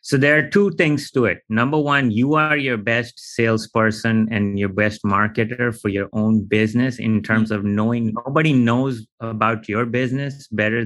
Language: English